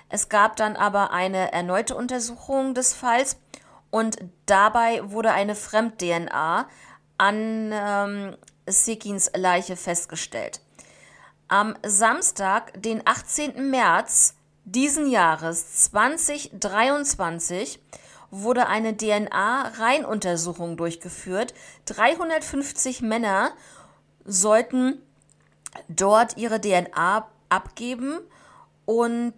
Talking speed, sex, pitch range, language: 80 wpm, female, 195-240 Hz, German